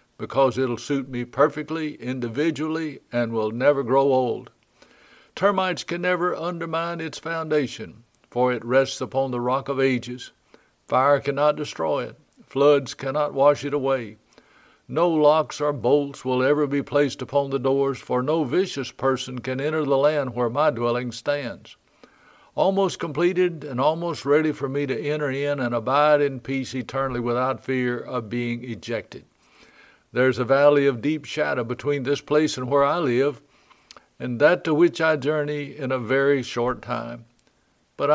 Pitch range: 125-150 Hz